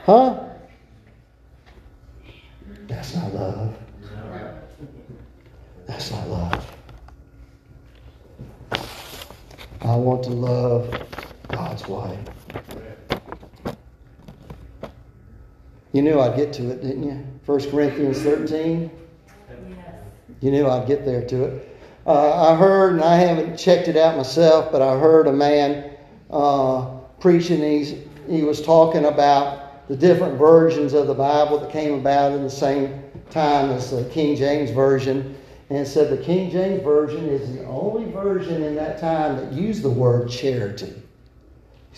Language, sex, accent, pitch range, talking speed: English, male, American, 120-150 Hz, 125 wpm